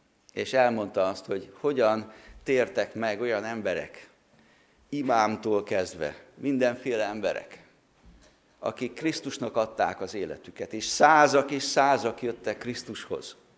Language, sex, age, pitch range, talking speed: Hungarian, male, 50-69, 120-150 Hz, 105 wpm